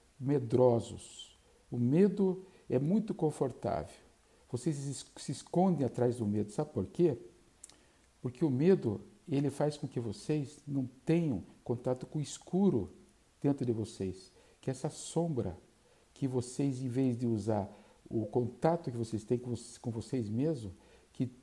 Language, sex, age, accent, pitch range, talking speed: Portuguese, male, 50-69, Brazilian, 120-150 Hz, 145 wpm